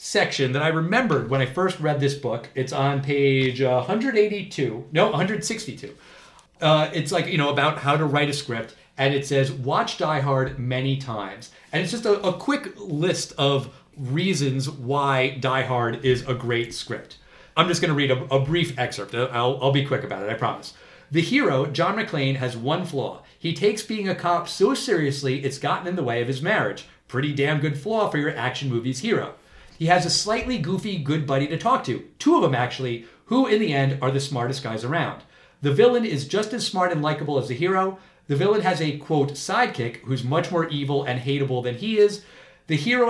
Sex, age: male, 40-59